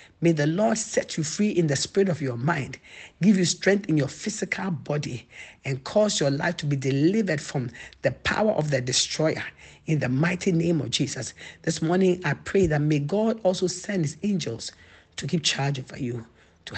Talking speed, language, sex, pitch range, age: 195 wpm, English, male, 135-175 Hz, 50-69